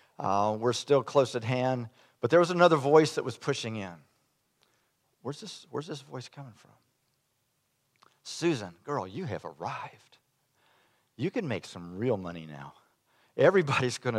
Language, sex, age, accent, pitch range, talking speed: English, male, 50-69, American, 105-140 Hz, 150 wpm